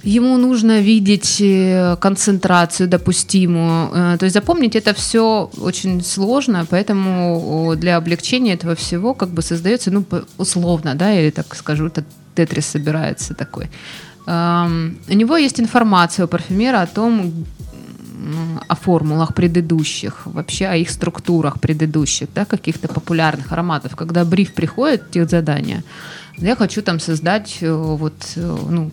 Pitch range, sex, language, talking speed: 165-200 Hz, female, Russian, 125 wpm